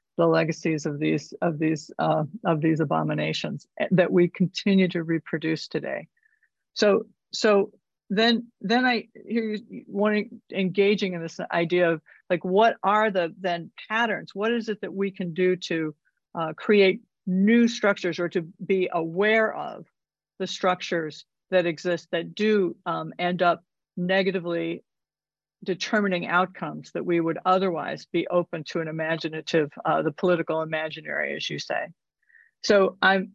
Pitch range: 170-200 Hz